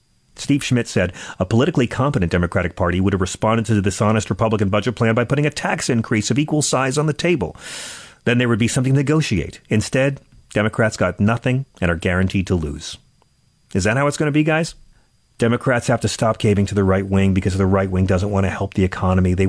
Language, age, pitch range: English, 40-59, 100-135 Hz